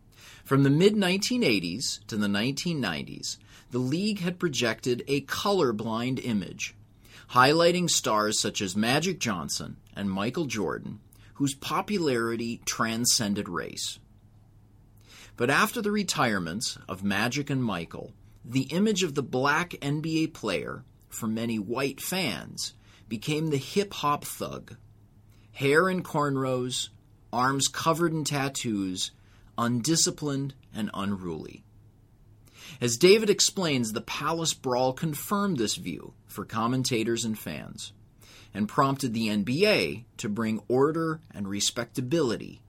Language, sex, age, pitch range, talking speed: English, male, 30-49, 105-145 Hz, 115 wpm